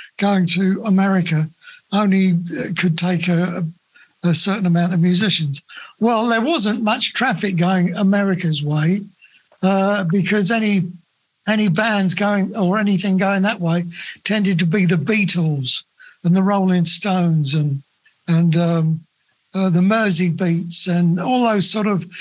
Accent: British